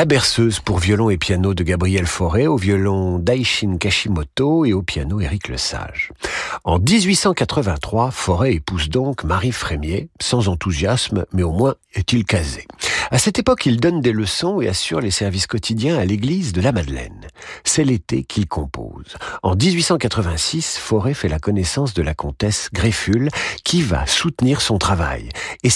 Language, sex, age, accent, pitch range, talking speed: French, male, 50-69, French, 95-130 Hz, 165 wpm